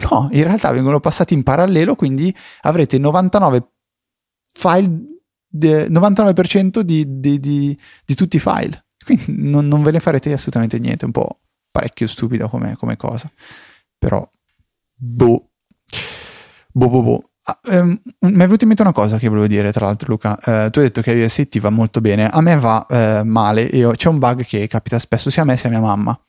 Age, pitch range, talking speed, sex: 30-49, 115-160 Hz, 195 wpm, male